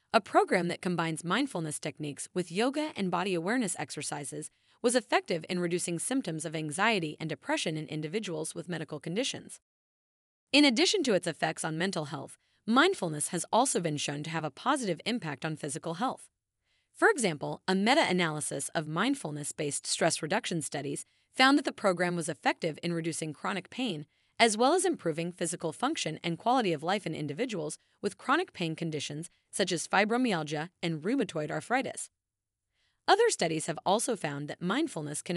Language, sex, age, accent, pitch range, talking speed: English, female, 30-49, American, 155-225 Hz, 165 wpm